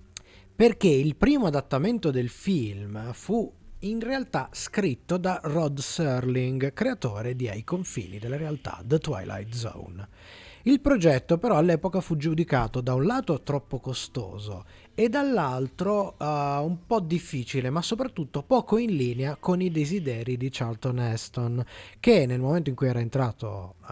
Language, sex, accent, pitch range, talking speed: Italian, male, native, 120-175 Hz, 140 wpm